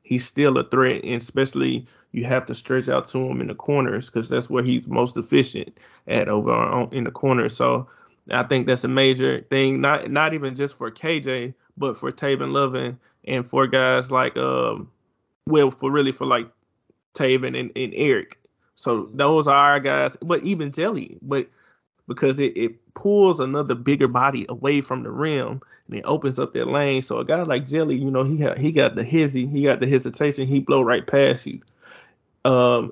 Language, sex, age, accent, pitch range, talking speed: English, male, 20-39, American, 125-145 Hz, 195 wpm